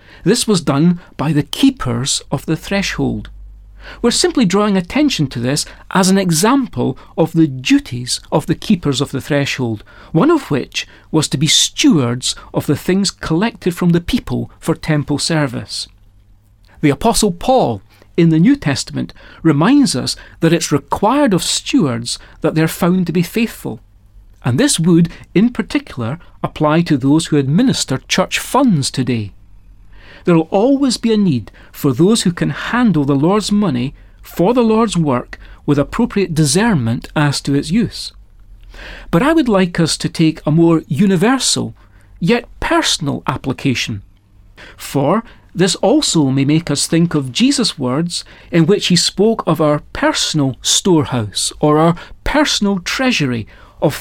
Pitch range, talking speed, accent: 120-195 Hz, 155 wpm, British